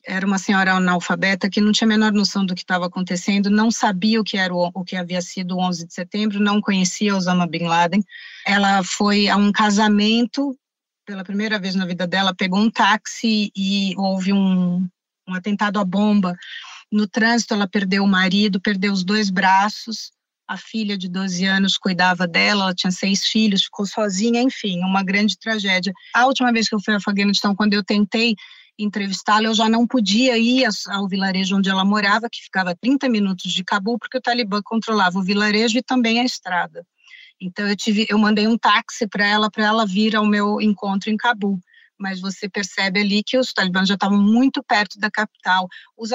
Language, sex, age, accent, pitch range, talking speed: Portuguese, female, 30-49, Brazilian, 190-215 Hz, 195 wpm